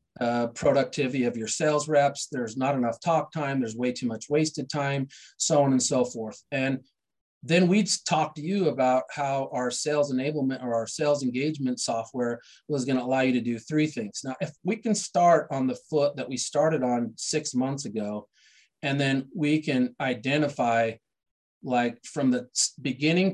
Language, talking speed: English, 185 wpm